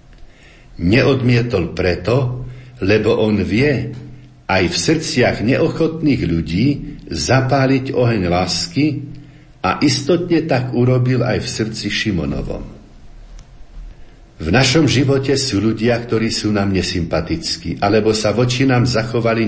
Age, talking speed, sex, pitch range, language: 60-79, 110 wpm, male, 95-130 Hz, Slovak